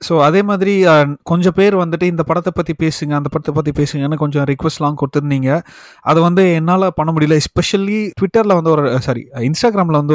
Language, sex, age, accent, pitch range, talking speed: Tamil, male, 30-49, native, 140-175 Hz, 170 wpm